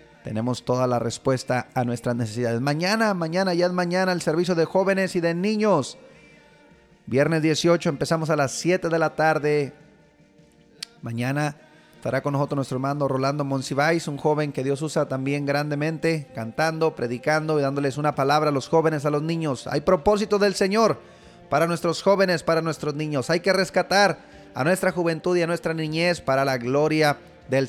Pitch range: 140-175 Hz